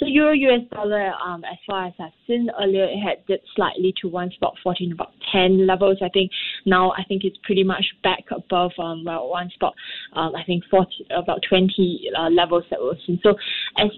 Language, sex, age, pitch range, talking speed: English, female, 20-39, 170-200 Hz, 205 wpm